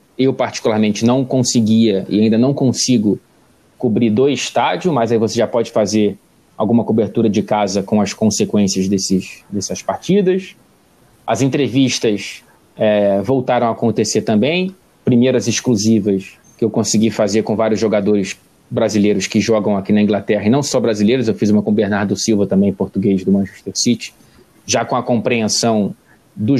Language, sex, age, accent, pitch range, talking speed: Portuguese, male, 20-39, Brazilian, 105-125 Hz, 155 wpm